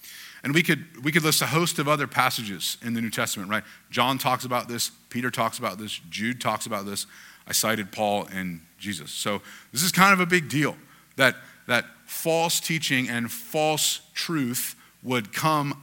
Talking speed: 190 wpm